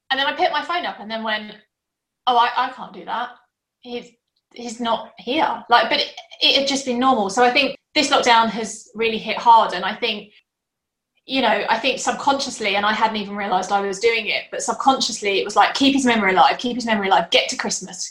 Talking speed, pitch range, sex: 230 wpm, 200-240 Hz, female